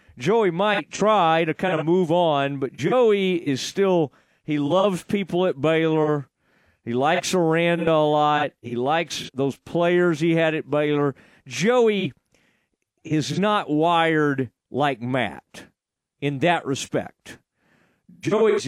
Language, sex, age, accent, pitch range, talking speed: English, male, 40-59, American, 140-190 Hz, 130 wpm